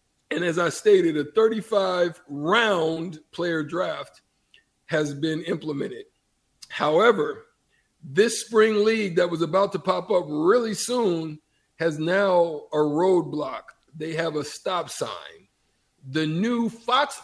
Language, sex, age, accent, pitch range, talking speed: English, male, 50-69, American, 155-195 Hz, 120 wpm